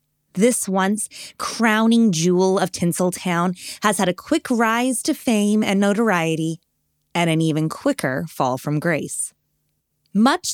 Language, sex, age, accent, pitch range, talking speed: English, female, 20-39, American, 160-230 Hz, 130 wpm